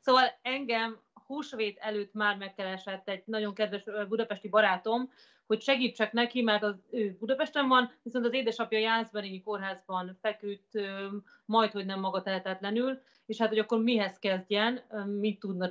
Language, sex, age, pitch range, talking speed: Hungarian, female, 30-49, 195-230 Hz, 140 wpm